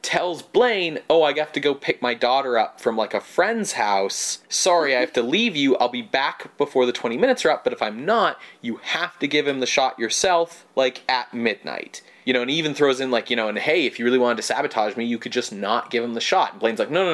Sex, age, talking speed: male, 30-49, 275 wpm